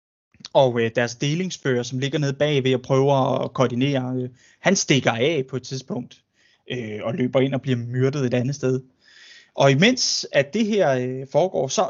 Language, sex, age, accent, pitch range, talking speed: Danish, male, 20-39, native, 130-175 Hz, 190 wpm